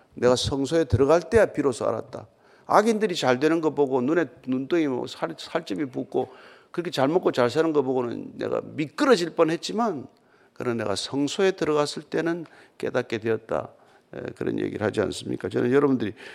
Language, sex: Korean, male